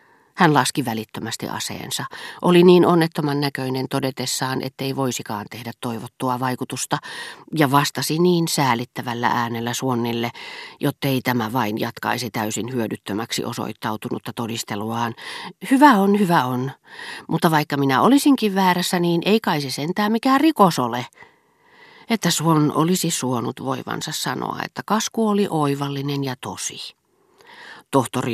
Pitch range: 120-170 Hz